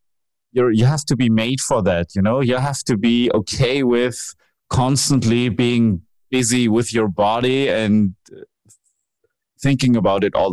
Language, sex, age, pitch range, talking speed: English, male, 30-49, 95-125 Hz, 155 wpm